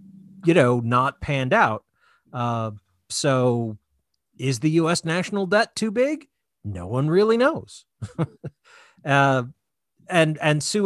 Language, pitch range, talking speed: English, 120-150 Hz, 120 wpm